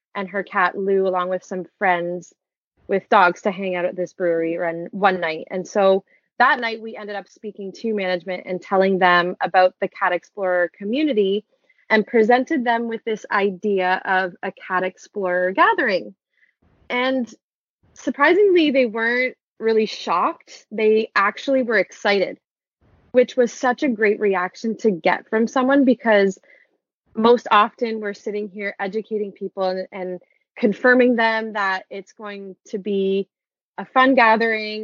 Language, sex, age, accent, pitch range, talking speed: English, female, 20-39, American, 185-225 Hz, 150 wpm